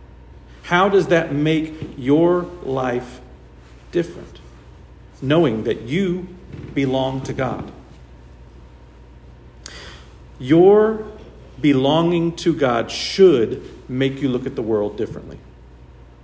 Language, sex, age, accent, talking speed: English, male, 50-69, American, 90 wpm